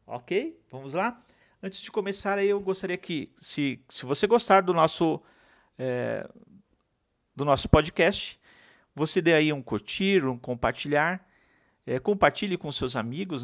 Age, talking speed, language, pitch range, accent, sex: 50-69, 145 wpm, Portuguese, 135-205 Hz, Brazilian, male